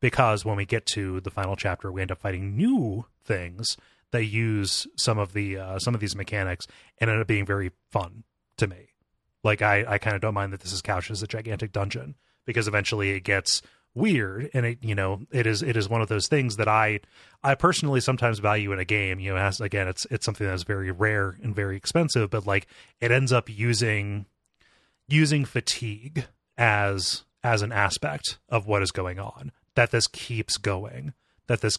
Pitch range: 100-115 Hz